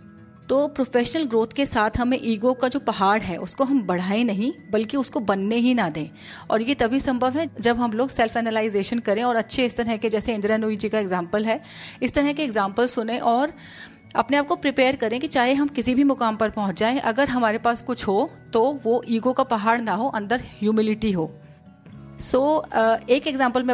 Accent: native